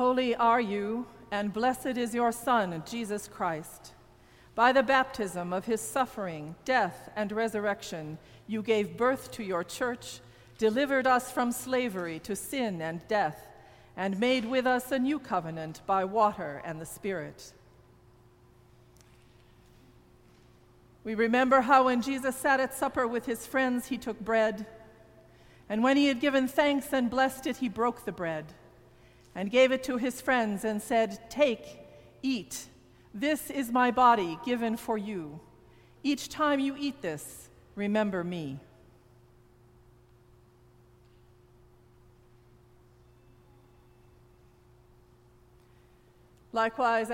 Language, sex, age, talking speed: English, female, 50-69, 125 wpm